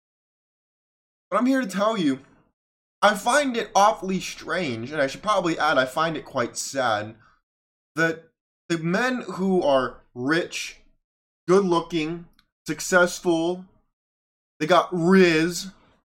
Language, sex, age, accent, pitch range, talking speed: English, male, 20-39, American, 155-195 Hz, 120 wpm